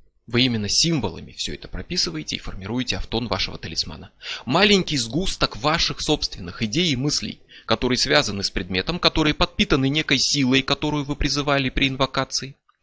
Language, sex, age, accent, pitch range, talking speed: Russian, male, 20-39, native, 115-160 Hz, 145 wpm